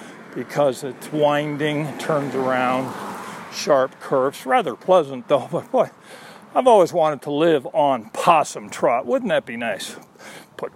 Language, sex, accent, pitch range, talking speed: English, male, American, 140-200 Hz, 140 wpm